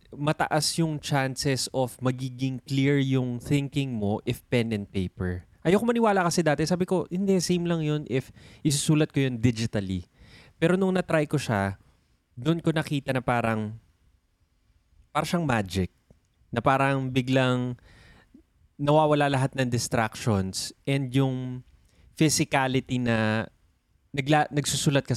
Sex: male